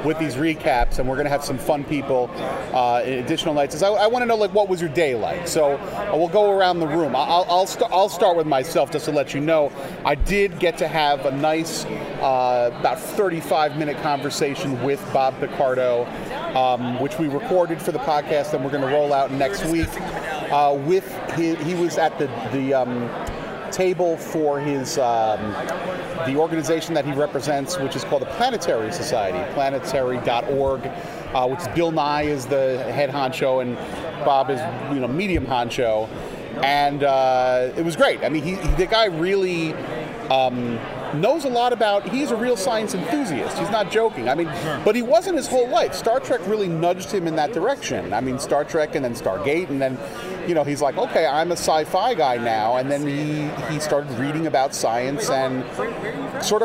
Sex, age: male, 30-49